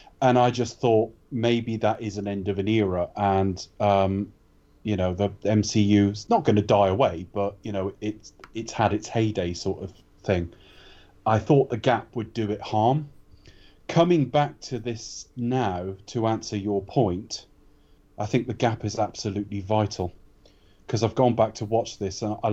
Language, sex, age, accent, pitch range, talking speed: English, male, 30-49, British, 100-115 Hz, 180 wpm